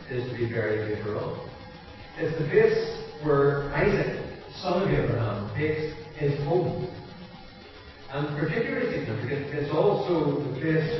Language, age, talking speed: English, 50-69, 135 wpm